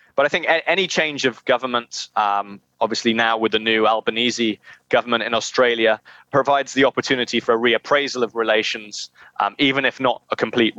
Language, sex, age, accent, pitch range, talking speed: English, male, 20-39, British, 115-145 Hz, 170 wpm